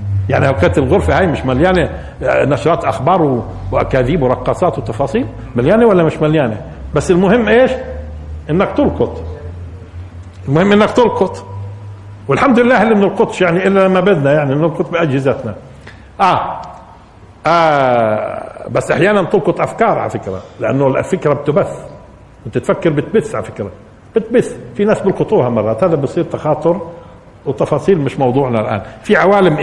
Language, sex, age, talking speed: Arabic, male, 50-69, 130 wpm